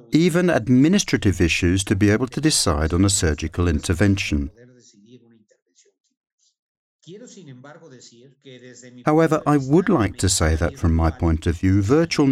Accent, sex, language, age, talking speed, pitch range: British, male, English, 50-69, 120 wpm, 90-140 Hz